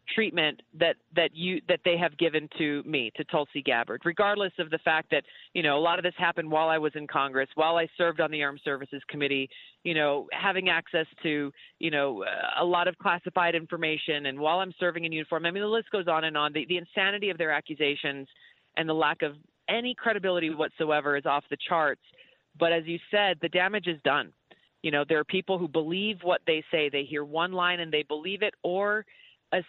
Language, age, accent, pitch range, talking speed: English, 40-59, American, 155-195 Hz, 220 wpm